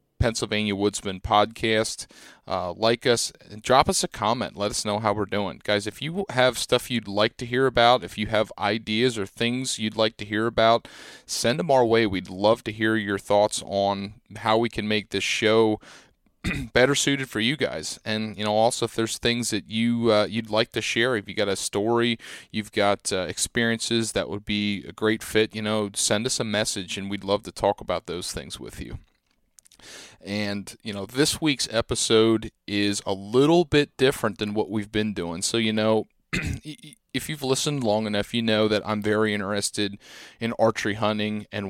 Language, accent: English, American